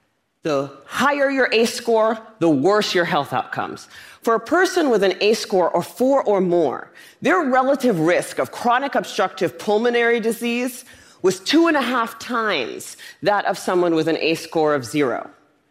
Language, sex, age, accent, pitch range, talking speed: English, female, 40-59, American, 170-260 Hz, 170 wpm